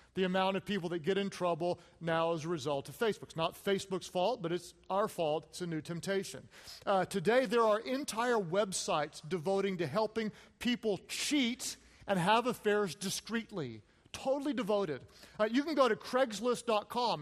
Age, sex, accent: 40-59, male, American